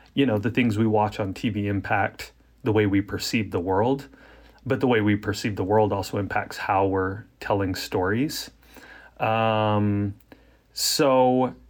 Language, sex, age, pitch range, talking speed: English, male, 30-49, 105-130 Hz, 155 wpm